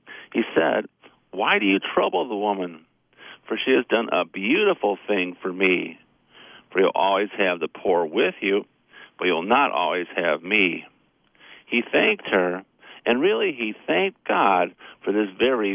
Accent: American